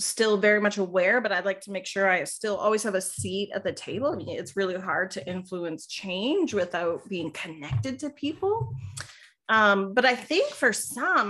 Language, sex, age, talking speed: English, female, 30-49, 190 wpm